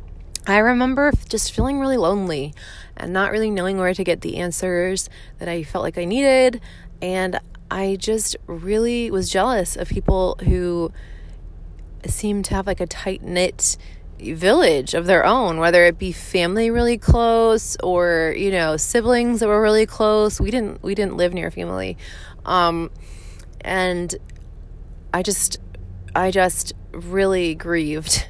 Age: 20-39